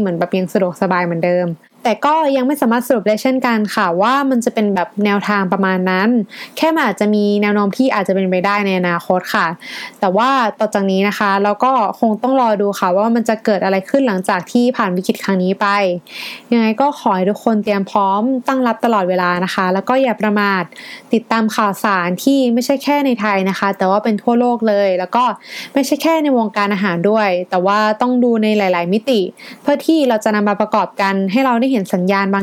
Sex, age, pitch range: female, 20-39, 195-250 Hz